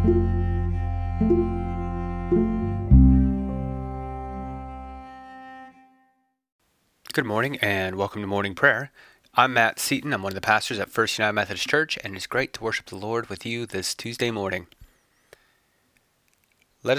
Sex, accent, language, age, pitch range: male, American, English, 30-49, 95-135 Hz